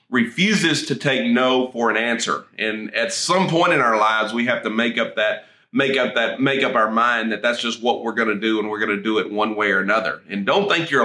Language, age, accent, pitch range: English, 30-49, American, 110-130 Hz